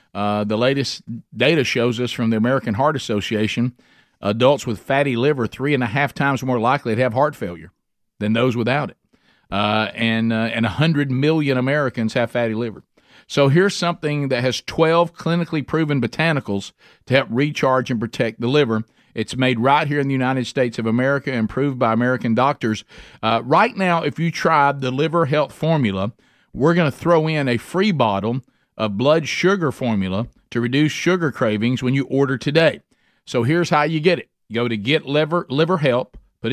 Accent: American